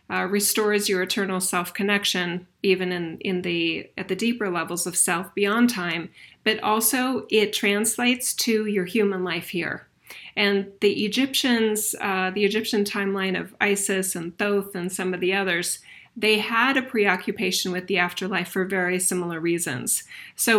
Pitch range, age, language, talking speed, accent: 180-215 Hz, 30-49, English, 160 wpm, American